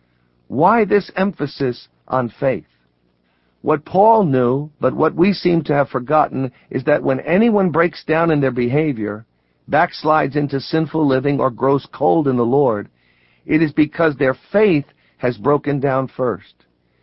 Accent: American